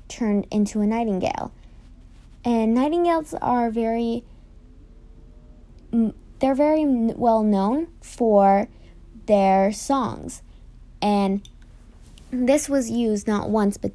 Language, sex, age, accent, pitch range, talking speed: English, female, 20-39, American, 195-235 Hz, 95 wpm